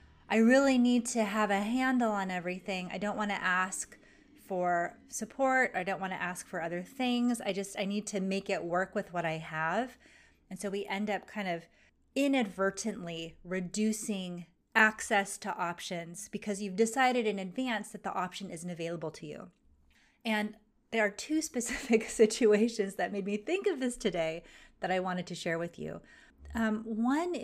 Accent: American